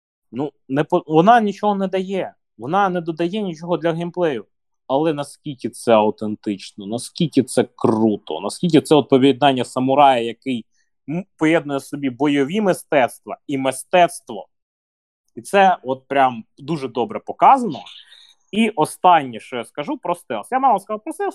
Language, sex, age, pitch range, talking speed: Ukrainian, male, 20-39, 120-195 Hz, 135 wpm